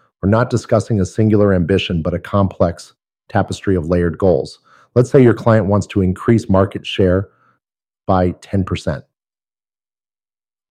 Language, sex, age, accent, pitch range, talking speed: English, male, 30-49, American, 95-115 Hz, 135 wpm